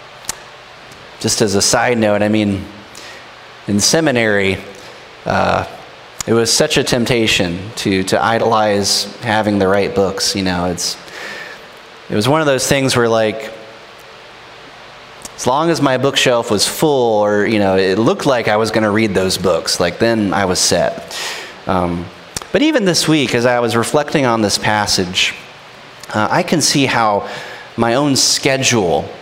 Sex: male